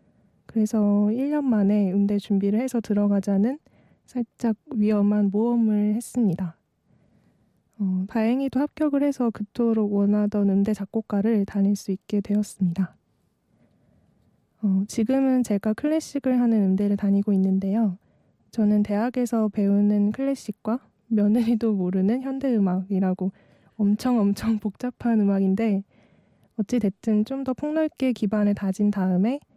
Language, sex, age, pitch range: Korean, female, 20-39, 200-240 Hz